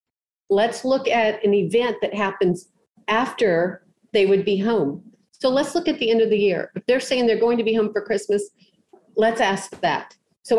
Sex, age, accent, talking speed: female, 50-69, American, 200 wpm